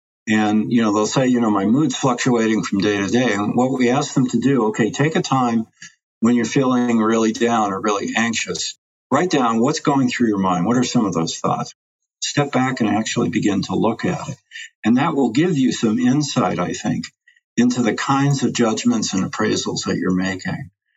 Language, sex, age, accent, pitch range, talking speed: English, male, 50-69, American, 110-140 Hz, 210 wpm